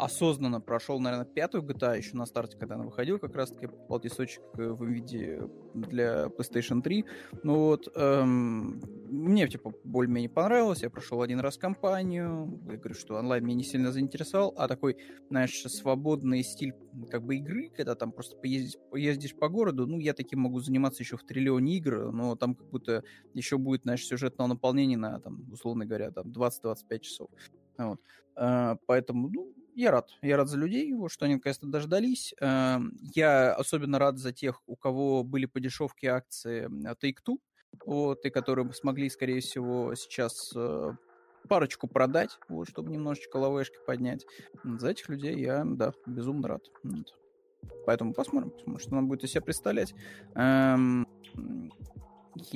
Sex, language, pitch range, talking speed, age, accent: male, Russian, 120-145 Hz, 150 wpm, 20-39, native